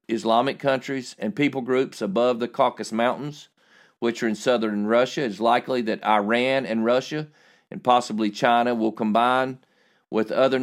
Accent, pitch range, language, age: American, 115-140 Hz, English, 50-69